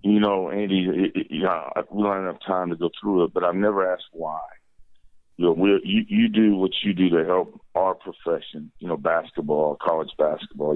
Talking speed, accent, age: 210 wpm, American, 40-59